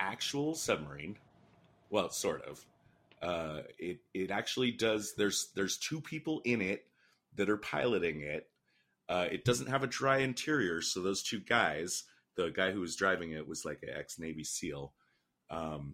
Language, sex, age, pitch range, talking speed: English, male, 30-49, 75-105 Hz, 160 wpm